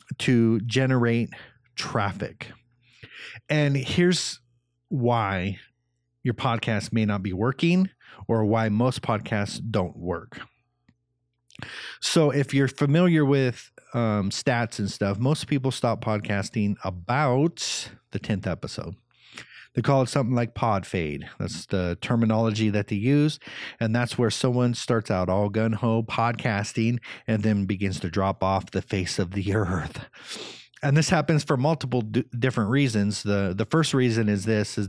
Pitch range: 105-130 Hz